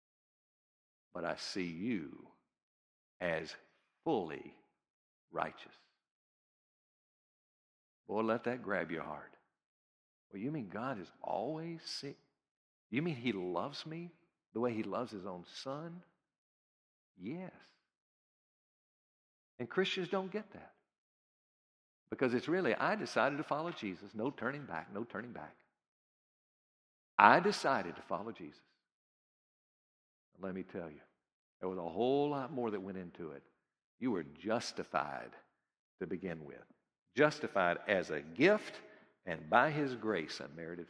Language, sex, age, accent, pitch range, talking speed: English, male, 60-79, American, 105-160 Hz, 130 wpm